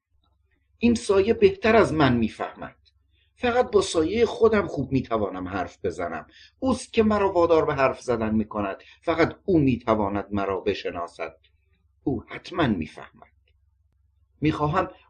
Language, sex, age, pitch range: Persian, male, 60-79, 95-155 Hz